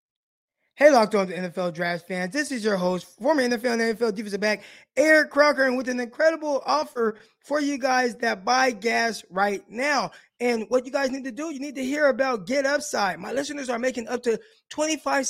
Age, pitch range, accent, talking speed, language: 20-39, 210-270 Hz, American, 205 wpm, English